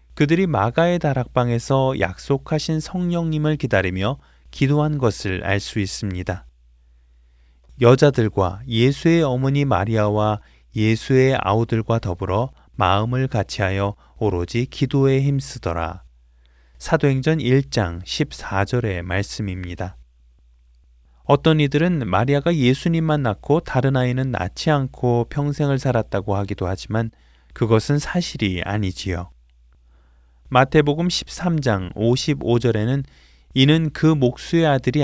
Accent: native